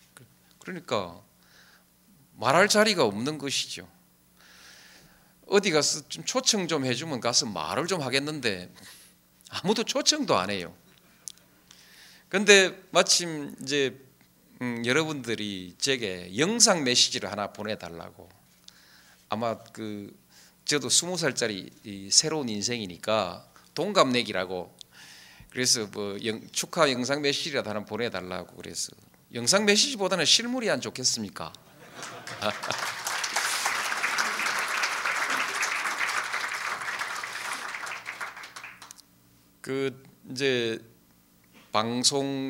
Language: Korean